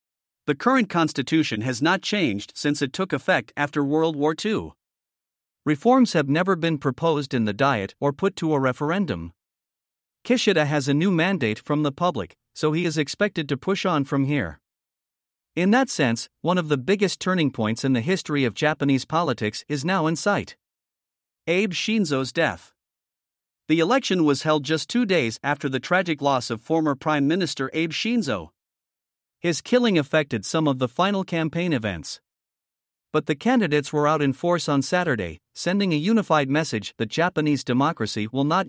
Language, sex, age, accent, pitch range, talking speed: English, male, 50-69, American, 135-175 Hz, 170 wpm